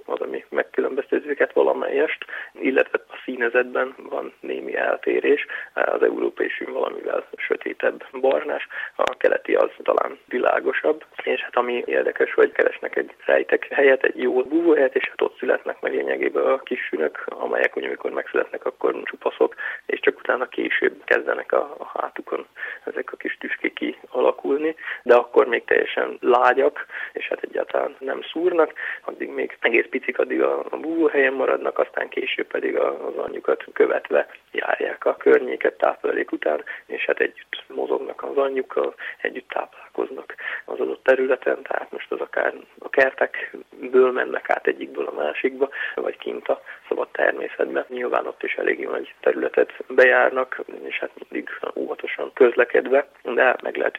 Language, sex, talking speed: Hungarian, male, 145 wpm